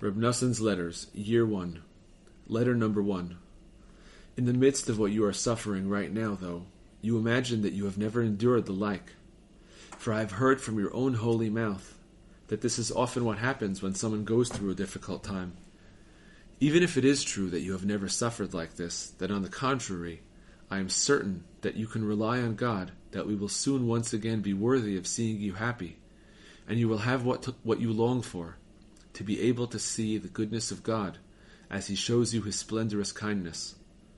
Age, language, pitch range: 40-59, English, 95-115 Hz